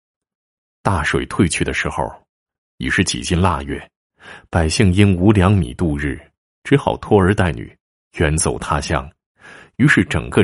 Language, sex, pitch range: Chinese, male, 75-110 Hz